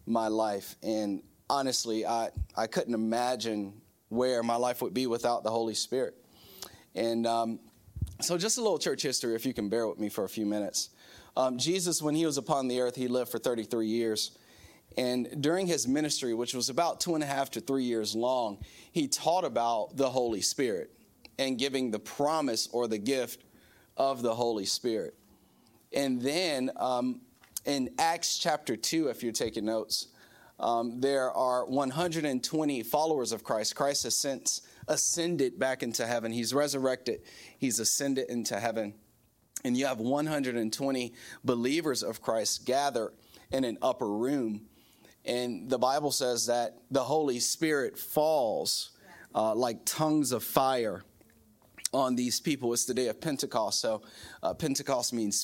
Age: 30-49